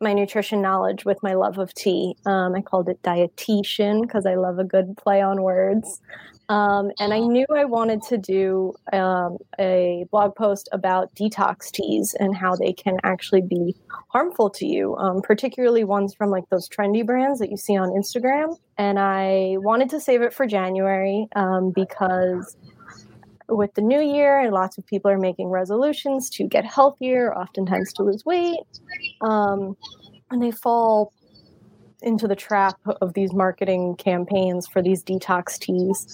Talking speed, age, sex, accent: 170 wpm, 20-39, female, American